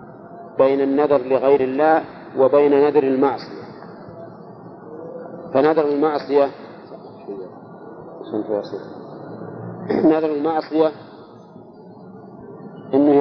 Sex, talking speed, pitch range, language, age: male, 55 wpm, 135-165 Hz, Arabic, 50-69